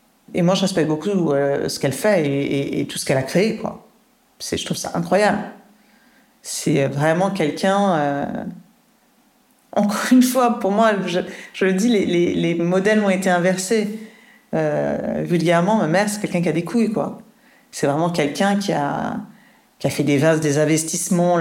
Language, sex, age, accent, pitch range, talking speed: French, female, 40-59, French, 165-225 Hz, 185 wpm